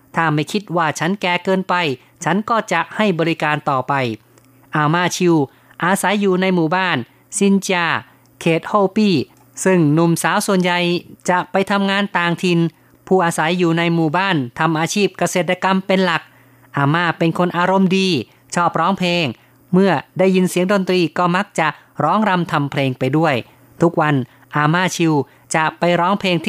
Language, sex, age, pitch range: Thai, female, 30-49, 150-185 Hz